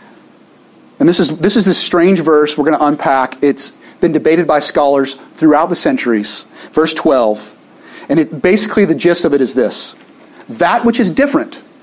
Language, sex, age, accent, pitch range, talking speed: English, male, 40-59, American, 155-245 Hz, 180 wpm